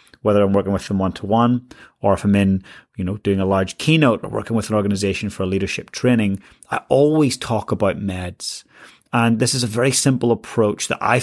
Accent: British